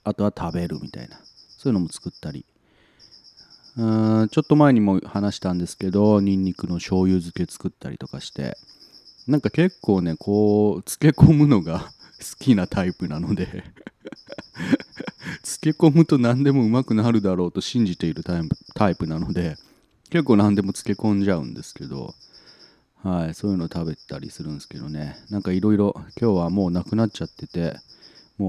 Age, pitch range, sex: 30-49, 85-120 Hz, male